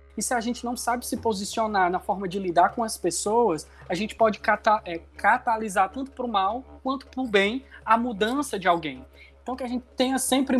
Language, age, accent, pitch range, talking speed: Portuguese, 20-39, Brazilian, 180-230 Hz, 210 wpm